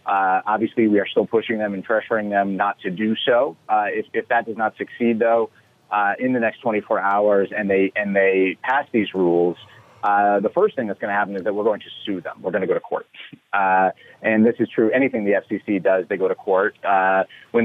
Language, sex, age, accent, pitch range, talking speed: English, male, 30-49, American, 100-120 Hz, 240 wpm